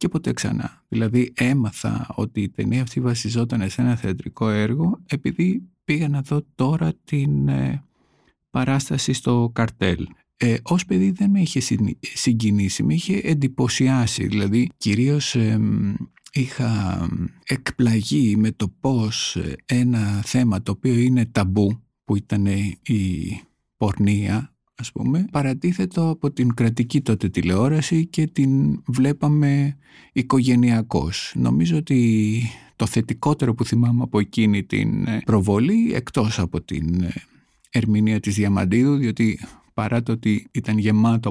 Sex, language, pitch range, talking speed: male, Greek, 105-140 Hz, 120 wpm